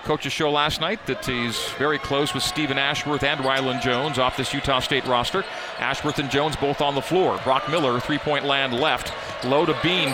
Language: English